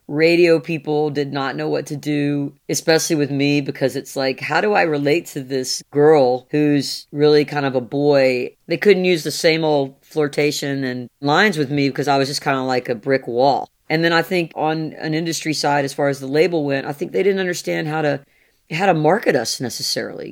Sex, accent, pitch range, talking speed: female, American, 140-170 Hz, 220 wpm